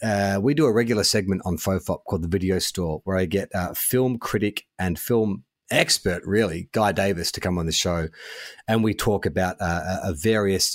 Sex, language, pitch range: male, English, 95-120 Hz